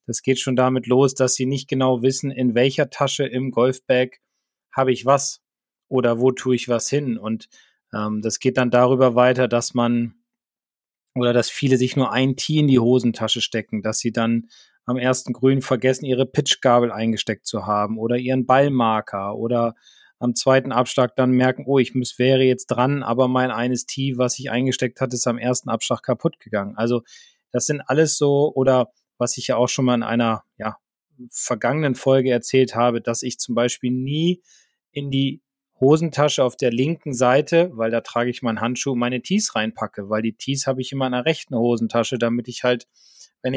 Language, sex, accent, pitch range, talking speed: German, male, German, 120-135 Hz, 190 wpm